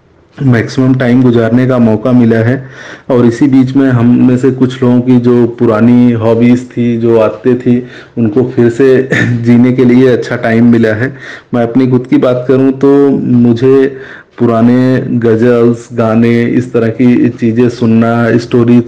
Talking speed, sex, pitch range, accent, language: 160 wpm, male, 115-125 Hz, Indian, English